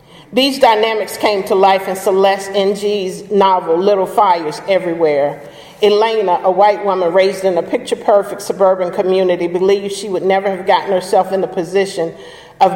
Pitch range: 180-215 Hz